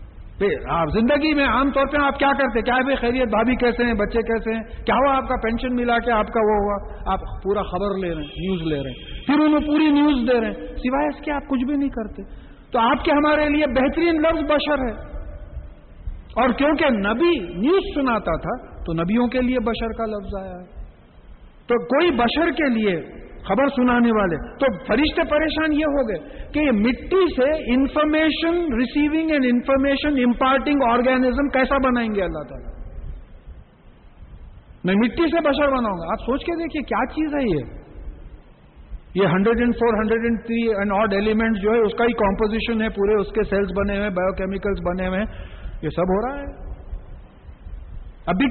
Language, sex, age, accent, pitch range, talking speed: English, male, 50-69, Indian, 195-275 Hz, 170 wpm